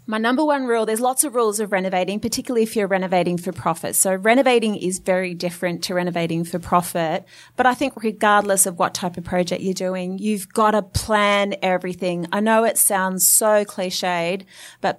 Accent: Australian